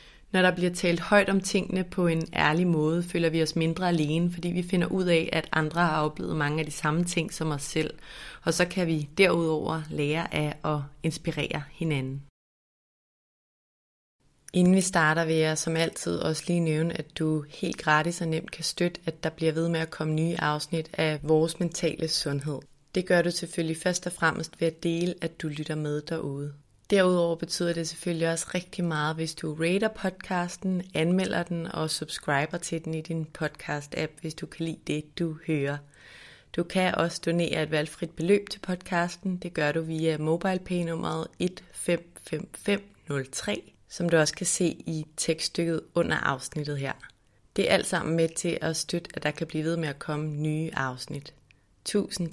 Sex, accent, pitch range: female, native, 155-175 Hz